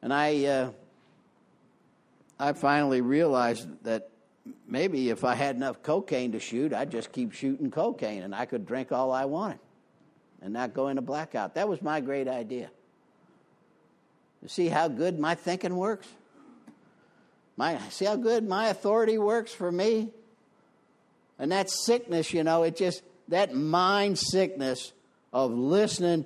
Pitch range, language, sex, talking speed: 120-175 Hz, English, male, 150 wpm